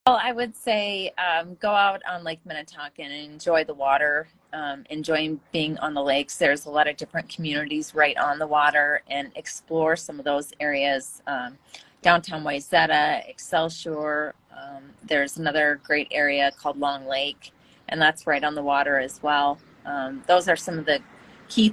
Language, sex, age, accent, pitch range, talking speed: English, female, 30-49, American, 145-175 Hz, 175 wpm